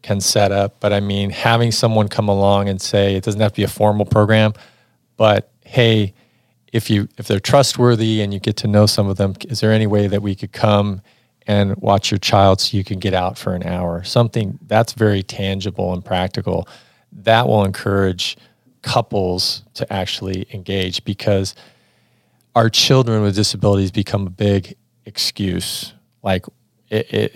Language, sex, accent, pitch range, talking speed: English, male, American, 100-115 Hz, 175 wpm